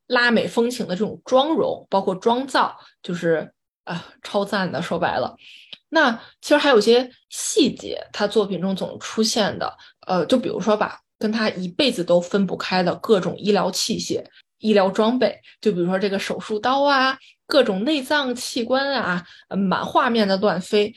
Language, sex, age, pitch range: Chinese, female, 20-39, 190-245 Hz